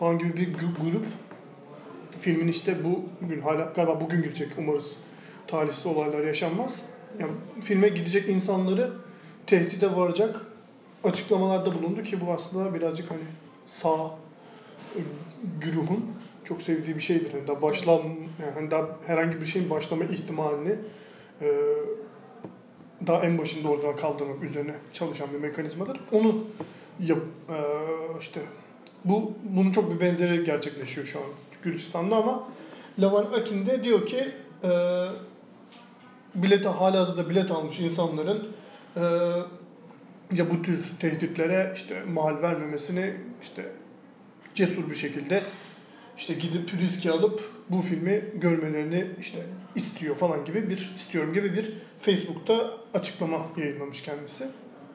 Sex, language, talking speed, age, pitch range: male, Turkish, 115 wpm, 30-49, 160-210 Hz